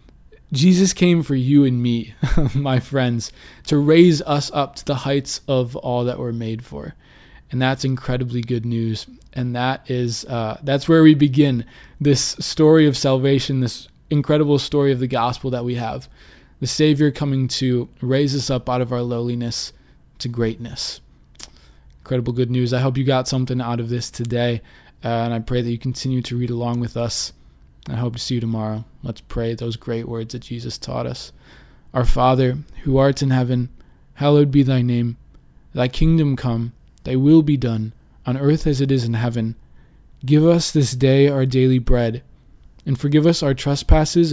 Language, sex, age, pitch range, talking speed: English, male, 20-39, 120-140 Hz, 180 wpm